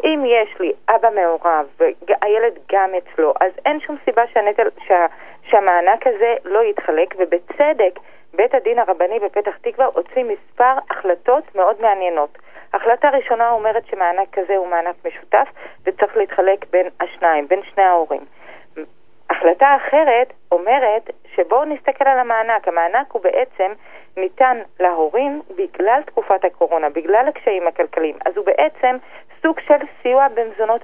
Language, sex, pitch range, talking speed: Hebrew, female, 190-275 Hz, 135 wpm